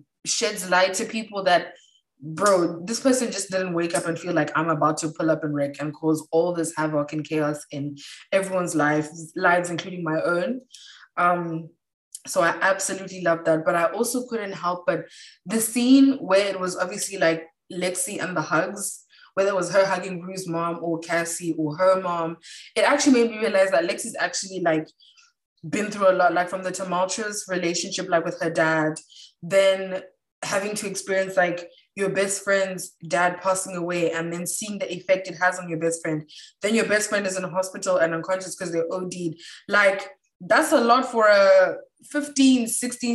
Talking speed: 190 wpm